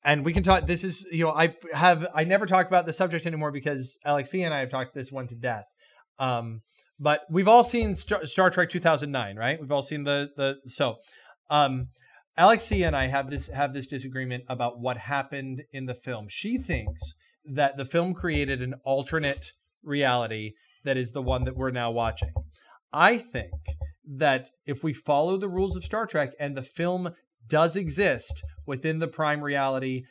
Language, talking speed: English, 185 wpm